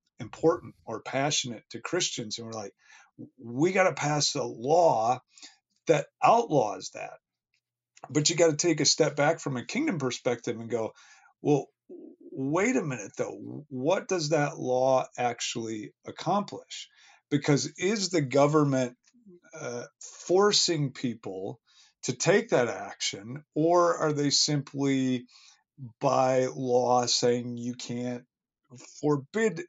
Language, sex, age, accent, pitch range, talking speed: English, male, 40-59, American, 125-160 Hz, 125 wpm